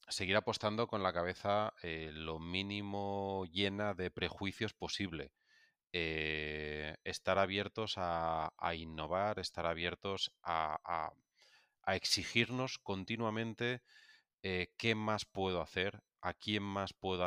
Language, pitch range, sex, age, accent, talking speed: Spanish, 80-100 Hz, male, 30-49, Spanish, 120 wpm